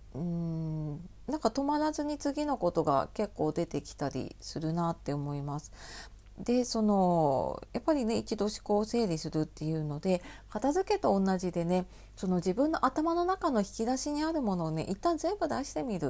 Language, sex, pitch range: Japanese, female, 160-265 Hz